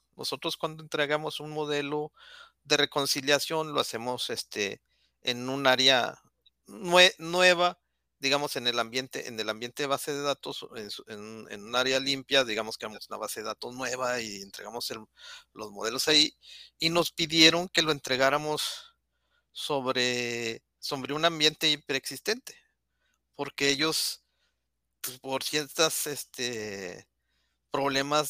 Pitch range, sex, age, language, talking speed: 130-155 Hz, male, 50-69, Spanish, 140 wpm